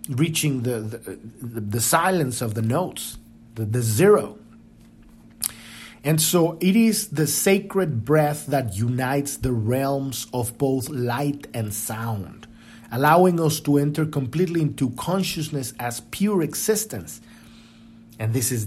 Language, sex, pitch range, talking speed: English, male, 115-160 Hz, 130 wpm